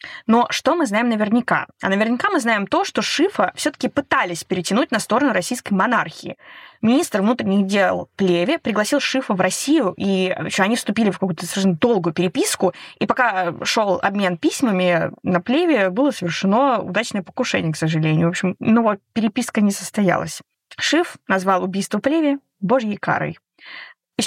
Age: 20-39